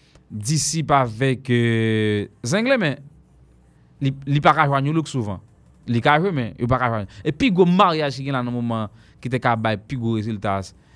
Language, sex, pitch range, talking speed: English, male, 110-145 Hz, 135 wpm